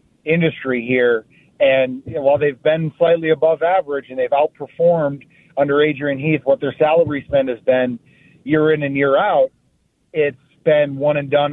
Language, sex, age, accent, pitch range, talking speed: English, male, 30-49, American, 130-150 Hz, 170 wpm